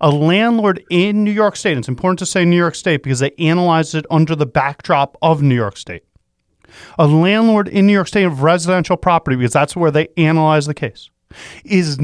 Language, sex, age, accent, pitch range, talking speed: English, male, 30-49, American, 135-190 Hz, 205 wpm